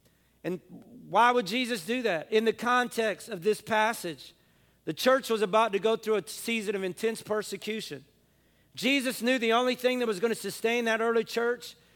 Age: 40-59